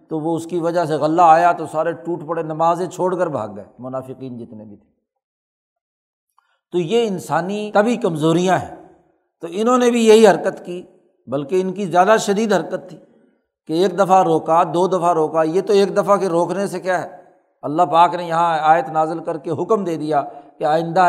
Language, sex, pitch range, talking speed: Urdu, male, 155-190 Hz, 200 wpm